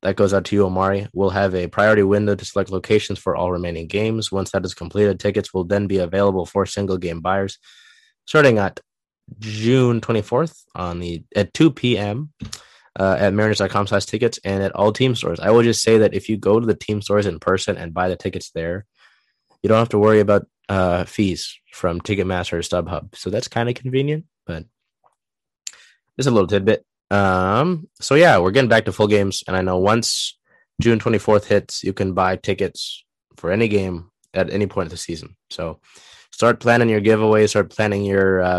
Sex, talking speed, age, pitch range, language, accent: male, 200 wpm, 20-39, 90-110 Hz, English, American